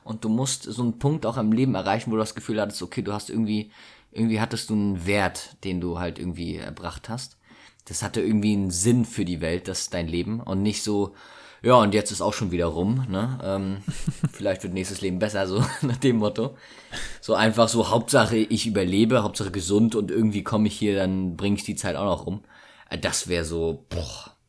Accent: German